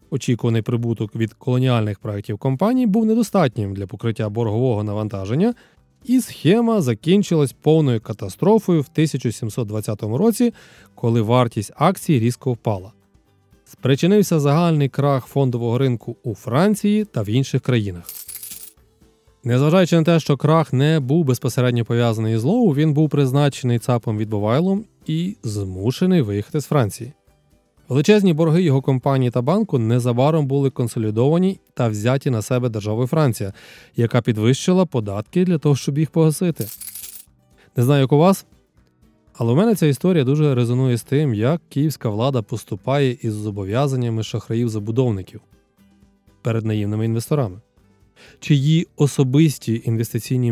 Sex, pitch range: male, 115-155 Hz